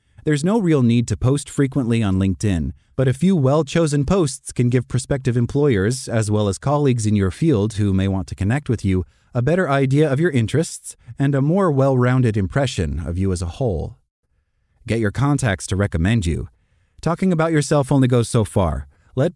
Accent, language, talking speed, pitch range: American, English, 190 wpm, 100-145 Hz